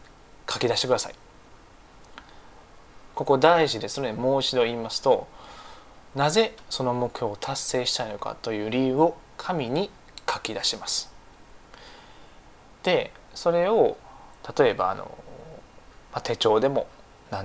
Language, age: Japanese, 20-39